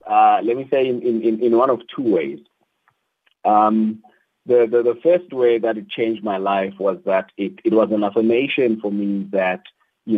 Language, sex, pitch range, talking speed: English, male, 105-120 Hz, 195 wpm